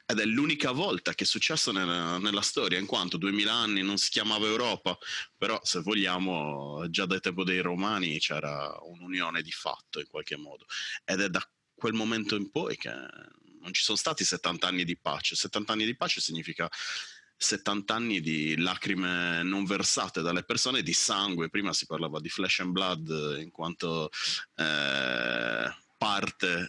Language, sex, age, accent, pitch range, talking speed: Italian, male, 30-49, native, 85-105 Hz, 170 wpm